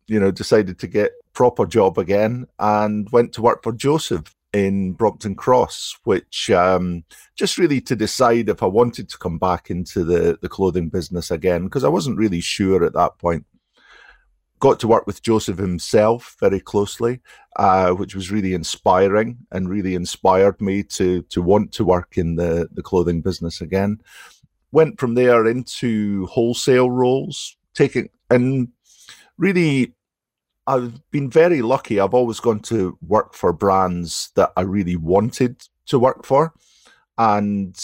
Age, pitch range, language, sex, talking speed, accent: 50-69, 90-115 Hz, English, male, 155 wpm, British